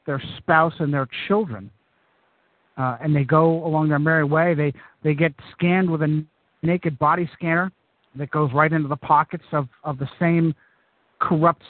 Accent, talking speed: American, 175 wpm